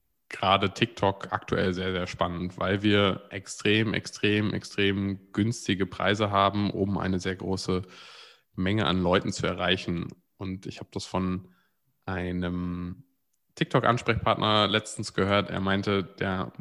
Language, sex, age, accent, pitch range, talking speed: German, male, 20-39, German, 100-120 Hz, 125 wpm